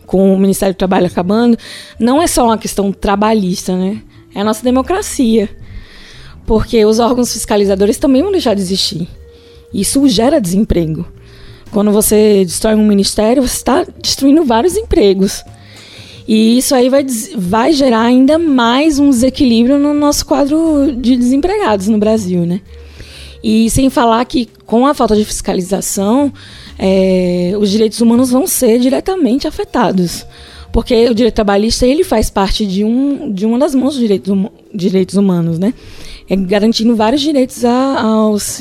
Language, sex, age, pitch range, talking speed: Portuguese, female, 20-39, 195-260 Hz, 155 wpm